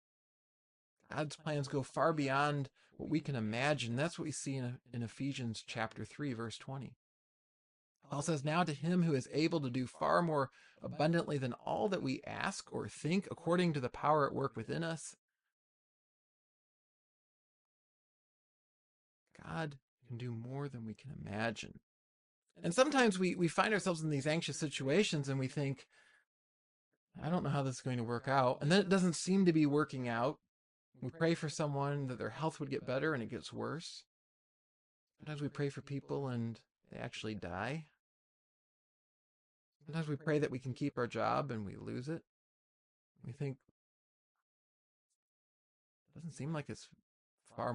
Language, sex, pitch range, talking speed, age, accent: English, male, 120-155 Hz, 165 wpm, 30-49, American